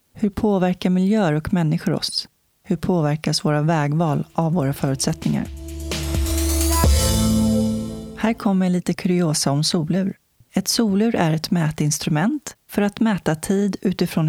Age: 30-49